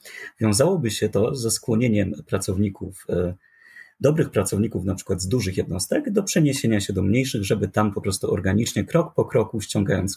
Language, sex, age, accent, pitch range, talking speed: Polish, male, 30-49, native, 100-135 Hz, 160 wpm